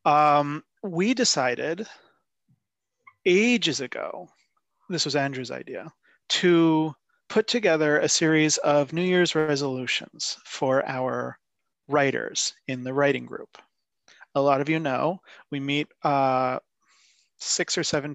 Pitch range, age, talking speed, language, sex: 145-175 Hz, 30-49, 120 wpm, English, male